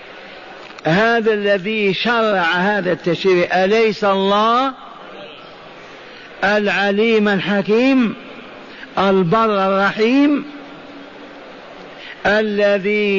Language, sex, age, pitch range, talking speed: Arabic, male, 50-69, 195-225 Hz, 55 wpm